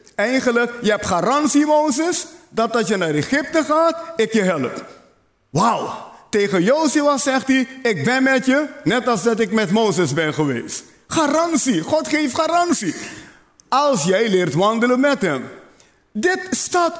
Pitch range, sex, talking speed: 195-285 Hz, male, 150 wpm